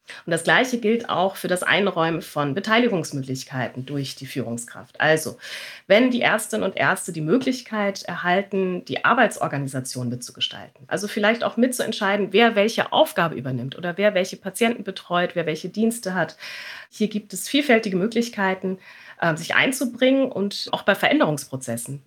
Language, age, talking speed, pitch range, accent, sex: German, 30-49, 145 wpm, 155-225 Hz, German, female